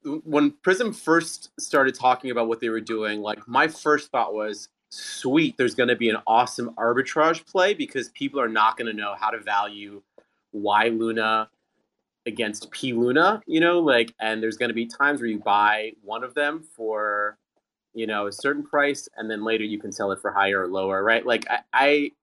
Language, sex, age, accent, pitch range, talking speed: English, male, 30-49, American, 105-125 Hz, 200 wpm